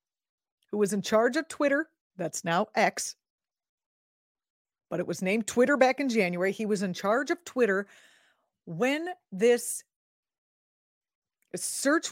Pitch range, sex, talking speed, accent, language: 185-260 Hz, female, 130 wpm, American, English